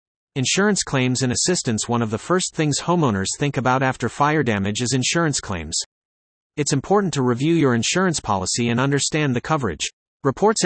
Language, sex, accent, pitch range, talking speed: English, male, American, 115-155 Hz, 170 wpm